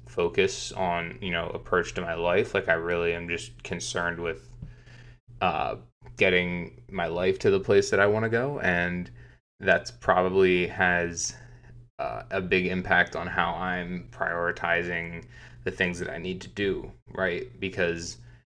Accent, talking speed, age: American, 155 wpm, 20-39